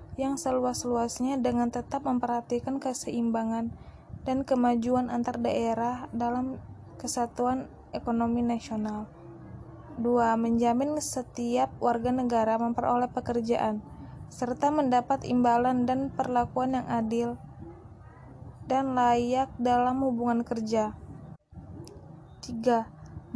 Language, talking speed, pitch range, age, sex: Indonesian, 85 wpm, 240-265 Hz, 20-39, female